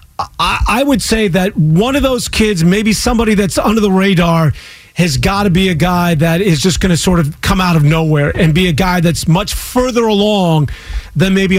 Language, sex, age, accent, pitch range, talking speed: English, male, 40-59, American, 170-210 Hz, 210 wpm